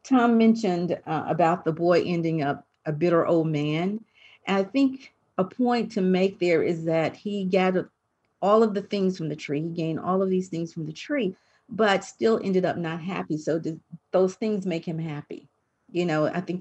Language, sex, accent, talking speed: English, female, American, 205 wpm